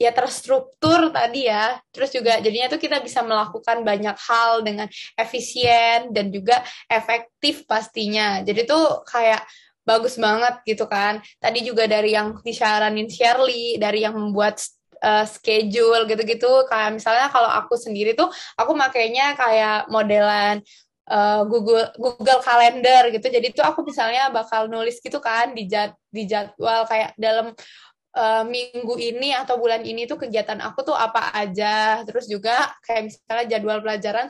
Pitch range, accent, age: 215-255 Hz, native, 20-39